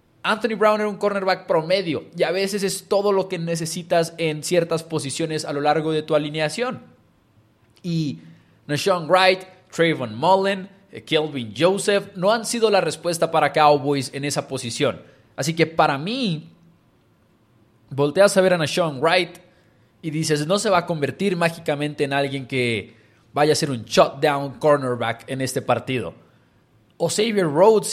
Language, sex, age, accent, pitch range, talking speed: English, male, 20-39, Mexican, 125-175 Hz, 155 wpm